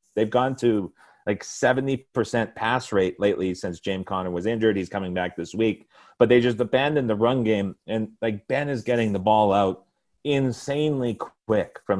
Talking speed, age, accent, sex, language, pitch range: 180 wpm, 40-59, American, male, English, 100-125 Hz